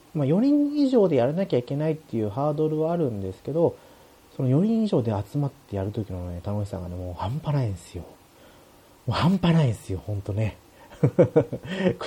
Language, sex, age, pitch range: Japanese, male, 30-49, 100-150 Hz